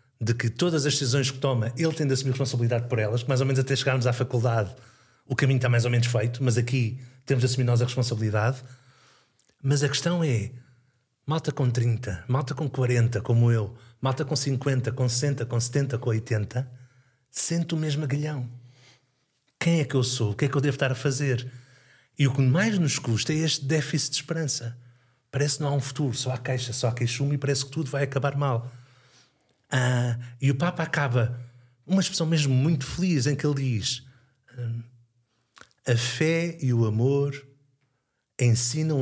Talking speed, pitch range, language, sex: 195 wpm, 120-145 Hz, Portuguese, male